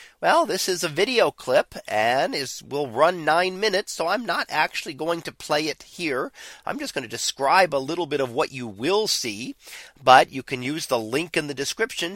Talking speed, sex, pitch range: 210 wpm, male, 135-185 Hz